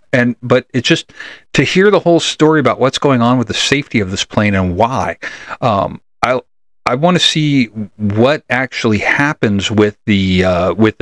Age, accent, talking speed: 40-59, American, 185 wpm